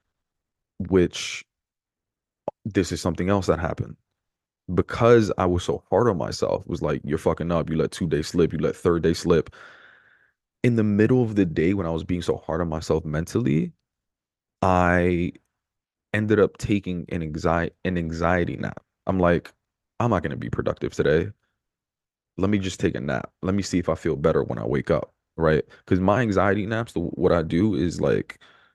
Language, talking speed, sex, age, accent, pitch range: English, 185 wpm, male, 20-39, American, 85-105 Hz